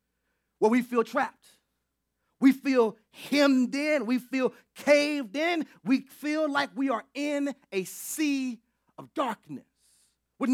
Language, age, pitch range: English, 30-49, 225-310 Hz